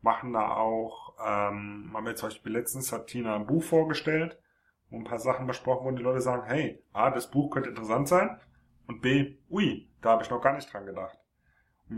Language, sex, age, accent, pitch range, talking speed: German, male, 30-49, German, 115-140 Hz, 215 wpm